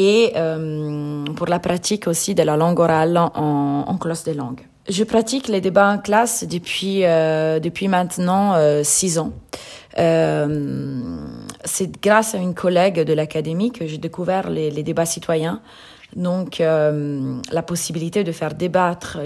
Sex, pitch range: female, 160-185 Hz